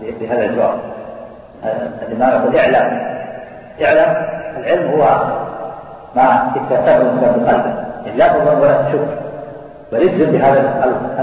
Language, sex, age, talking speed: Arabic, male, 50-69, 125 wpm